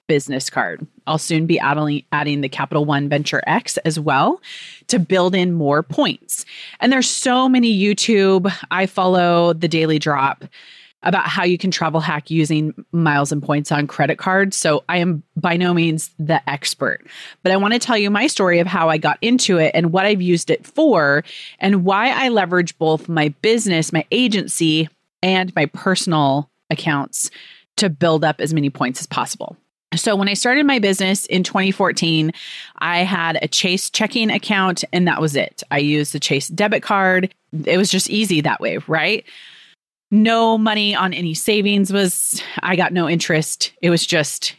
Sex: female